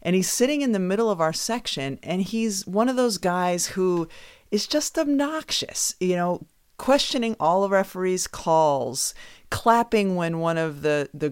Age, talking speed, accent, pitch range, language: 40-59, 170 wpm, American, 150-210 Hz, English